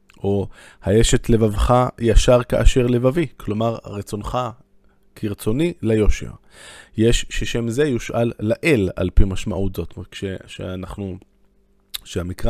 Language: Hebrew